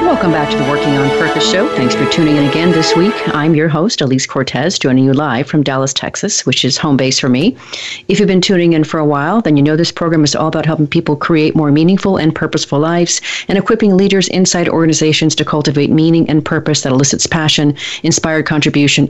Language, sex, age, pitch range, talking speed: English, female, 40-59, 140-170 Hz, 225 wpm